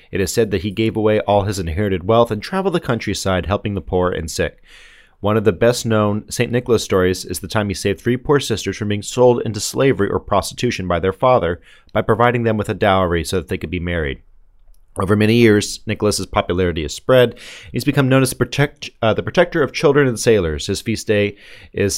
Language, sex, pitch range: English, male, 95-120 Hz